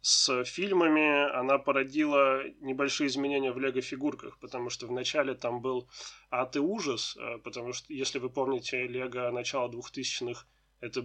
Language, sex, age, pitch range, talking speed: Russian, male, 20-39, 125-150 Hz, 135 wpm